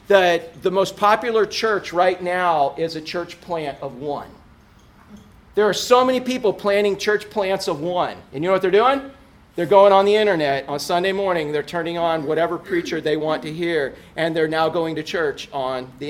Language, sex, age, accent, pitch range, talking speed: English, male, 40-59, American, 155-215 Hz, 200 wpm